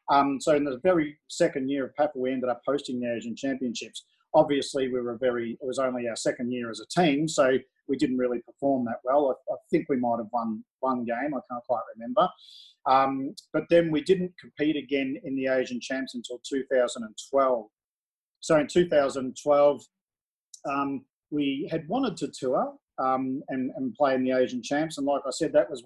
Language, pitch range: English, 125-150 Hz